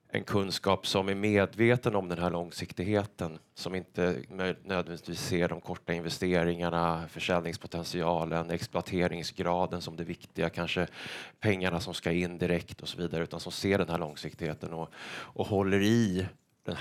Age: 30-49